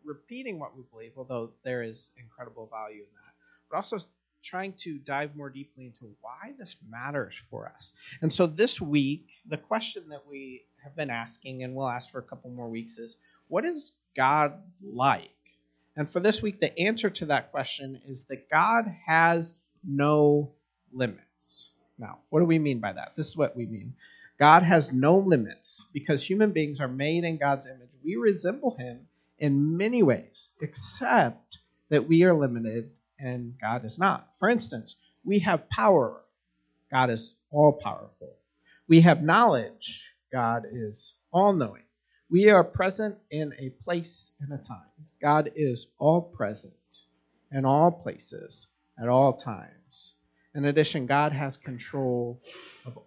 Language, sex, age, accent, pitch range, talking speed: English, male, 40-59, American, 115-165 Hz, 160 wpm